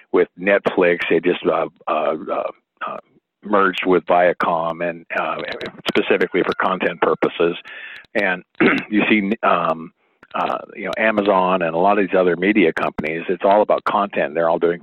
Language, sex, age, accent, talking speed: English, male, 50-69, American, 160 wpm